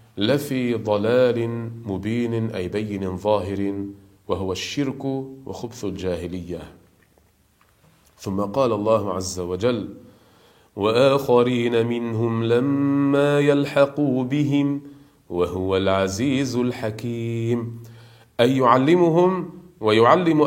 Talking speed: 75 wpm